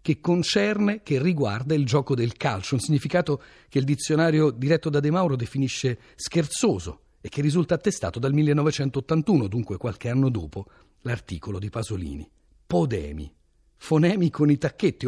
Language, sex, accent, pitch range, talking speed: Italian, male, native, 110-165 Hz, 145 wpm